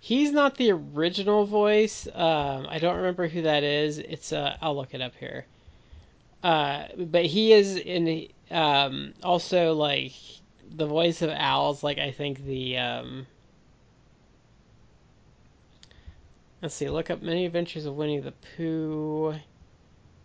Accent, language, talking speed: American, English, 140 wpm